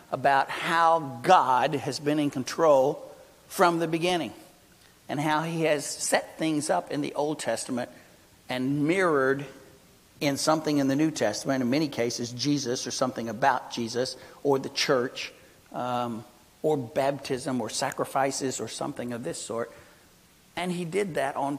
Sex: male